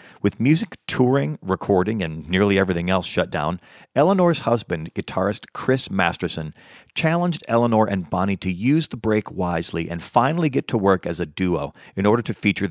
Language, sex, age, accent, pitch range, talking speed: English, male, 40-59, American, 90-120 Hz, 170 wpm